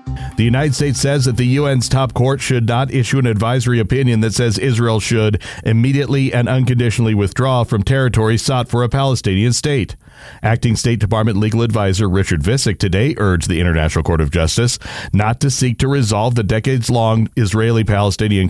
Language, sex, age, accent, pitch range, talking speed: English, male, 40-59, American, 100-125 Hz, 170 wpm